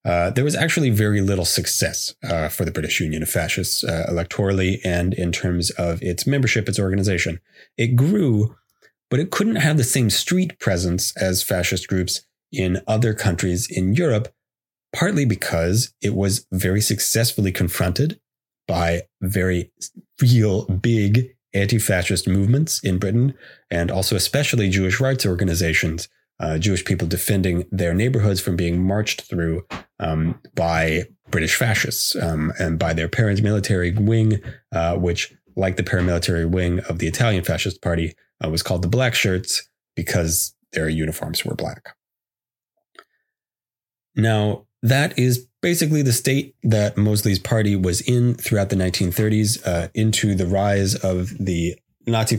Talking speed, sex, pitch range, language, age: 145 wpm, male, 90-115 Hz, English, 30-49